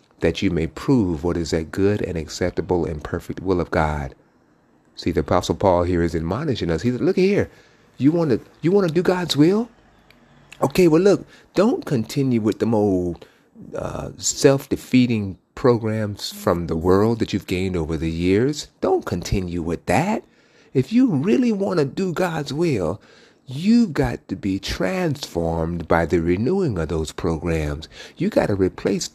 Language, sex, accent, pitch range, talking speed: English, male, American, 85-120 Hz, 175 wpm